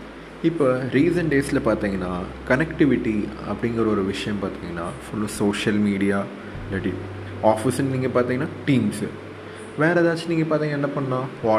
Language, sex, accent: Tamil, male, native